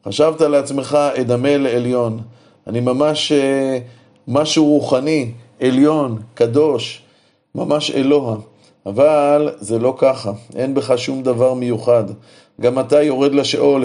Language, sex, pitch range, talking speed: Hebrew, male, 130-160 Hz, 115 wpm